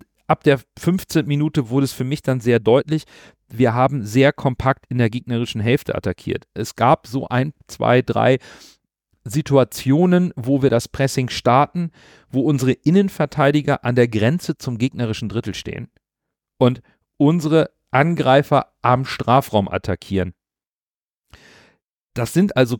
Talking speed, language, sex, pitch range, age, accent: 135 wpm, German, male, 120-155 Hz, 40-59, German